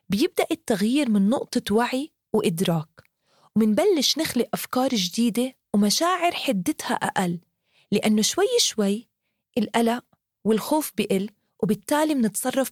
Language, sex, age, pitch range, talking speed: English, female, 20-39, 195-275 Hz, 100 wpm